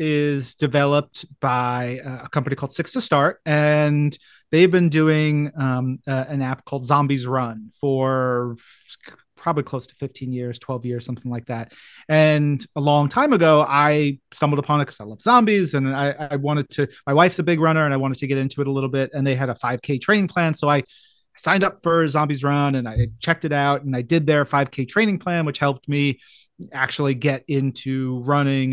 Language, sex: English, male